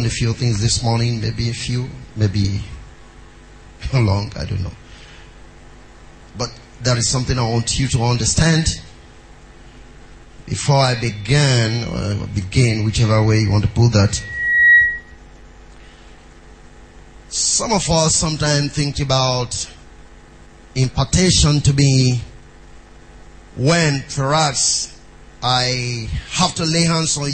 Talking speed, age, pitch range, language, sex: 115 wpm, 30-49, 85-140 Hz, English, male